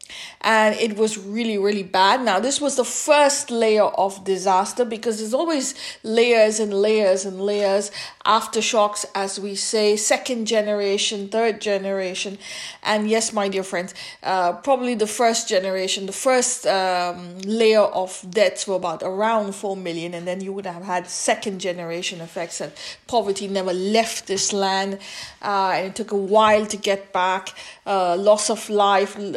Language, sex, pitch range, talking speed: English, female, 195-230 Hz, 160 wpm